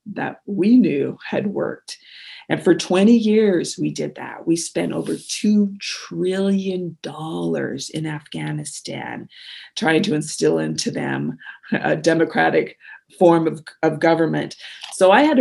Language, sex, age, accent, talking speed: English, female, 40-59, American, 130 wpm